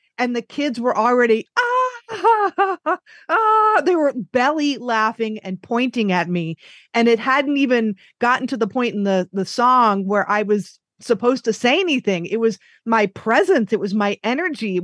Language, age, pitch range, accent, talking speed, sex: English, 30-49, 200-265 Hz, American, 180 wpm, female